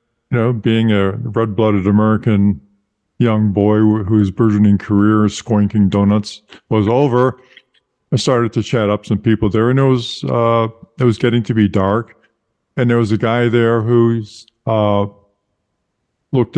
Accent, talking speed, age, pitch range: American, 155 wpm, 50-69, 105-125 Hz